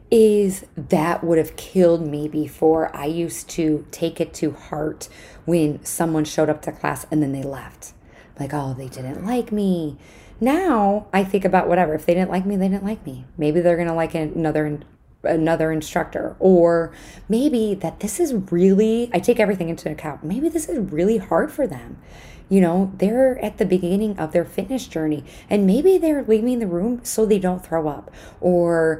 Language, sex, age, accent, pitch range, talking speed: English, female, 20-39, American, 155-205 Hz, 190 wpm